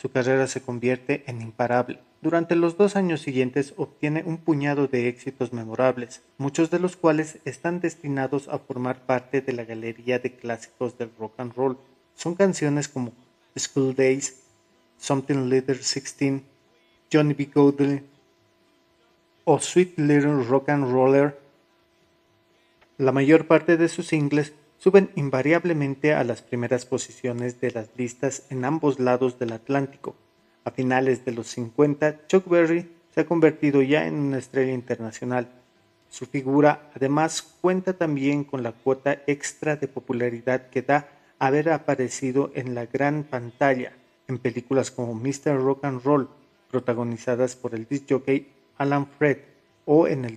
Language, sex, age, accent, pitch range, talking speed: Spanish, male, 30-49, Mexican, 125-150 Hz, 145 wpm